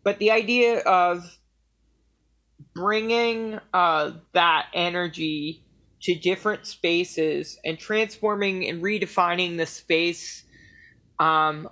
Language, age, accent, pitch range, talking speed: English, 20-39, American, 160-185 Hz, 90 wpm